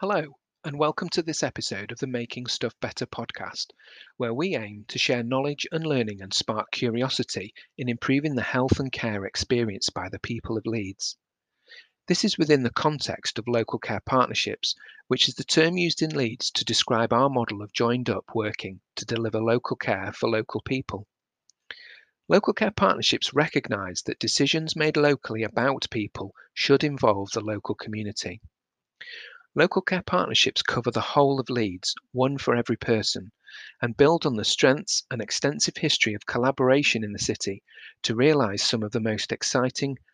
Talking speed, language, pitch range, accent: 170 wpm, English, 110-135 Hz, British